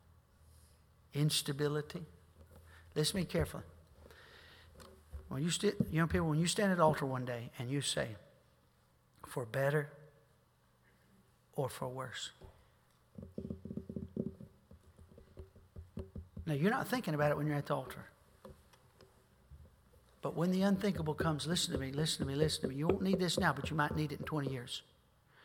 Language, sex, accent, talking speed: English, male, American, 150 wpm